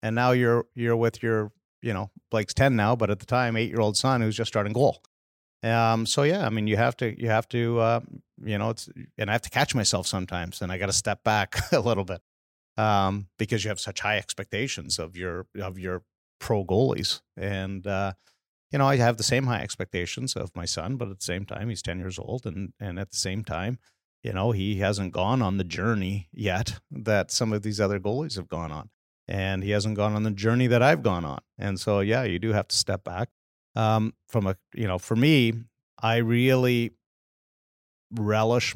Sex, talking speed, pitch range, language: male, 220 wpm, 95-115 Hz, English